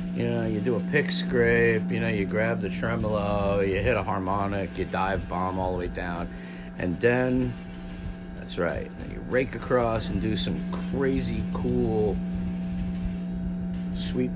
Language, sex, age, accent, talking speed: English, male, 50-69, American, 155 wpm